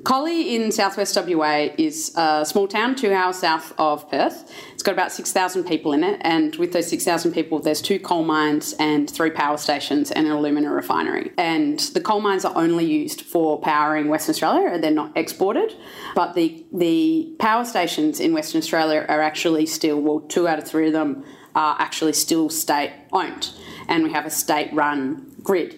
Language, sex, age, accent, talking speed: English, female, 30-49, Australian, 185 wpm